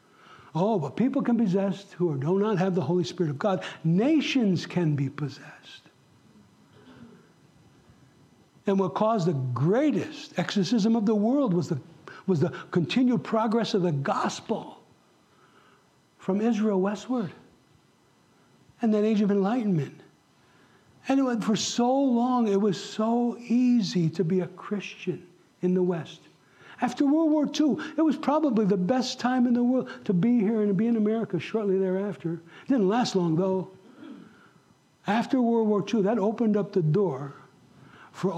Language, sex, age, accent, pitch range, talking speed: English, male, 60-79, American, 175-225 Hz, 155 wpm